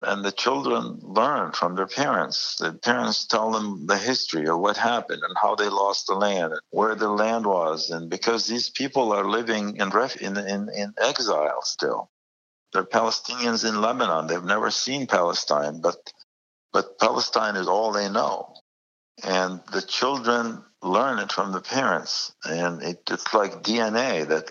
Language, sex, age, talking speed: English, male, 60-79, 165 wpm